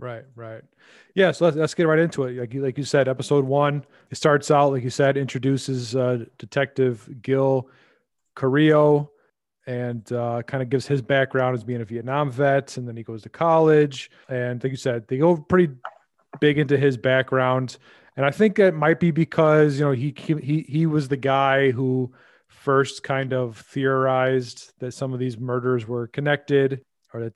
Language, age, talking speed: English, 30-49, 190 wpm